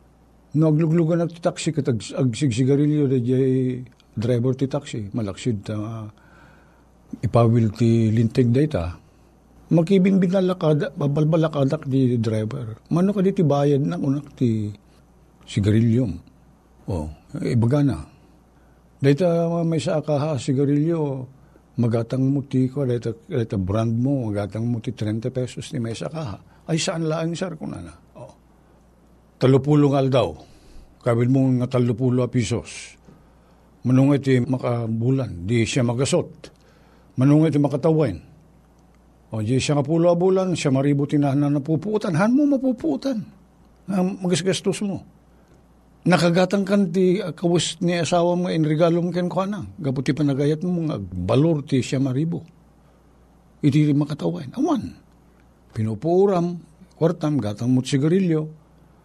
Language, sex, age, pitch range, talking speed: Filipino, male, 50-69, 125-170 Hz, 115 wpm